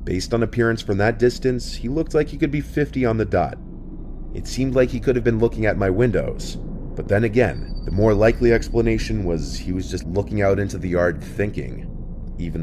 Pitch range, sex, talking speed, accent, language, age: 85-110 Hz, male, 215 wpm, American, English, 30-49